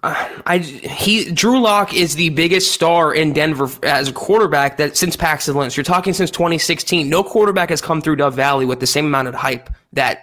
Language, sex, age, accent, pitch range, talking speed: English, male, 20-39, American, 150-190 Hz, 215 wpm